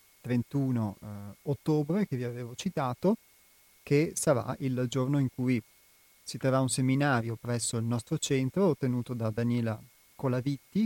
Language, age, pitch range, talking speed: Italian, 30-49, 120-145 Hz, 140 wpm